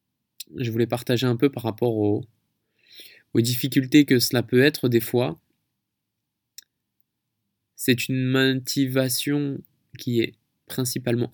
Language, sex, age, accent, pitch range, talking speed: French, male, 20-39, French, 115-130 Hz, 115 wpm